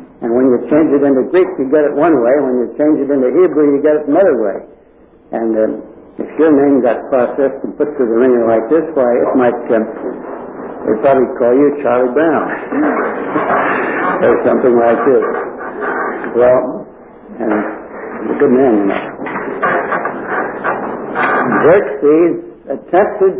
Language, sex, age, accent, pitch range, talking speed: English, male, 60-79, American, 125-170 Hz, 155 wpm